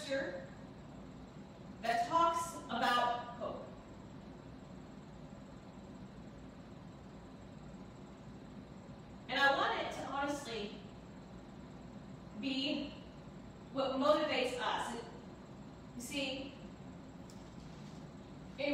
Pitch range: 230-285 Hz